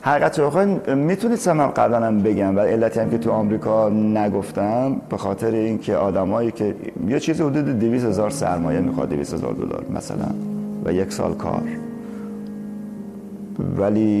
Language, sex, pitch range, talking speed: Persian, male, 100-120 Hz, 150 wpm